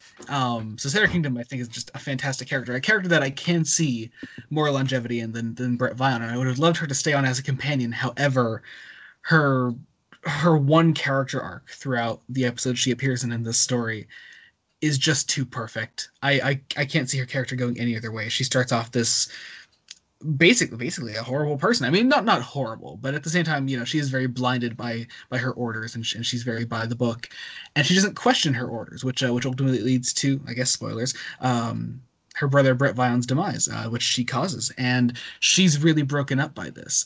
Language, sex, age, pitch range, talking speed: English, male, 20-39, 120-140 Hz, 220 wpm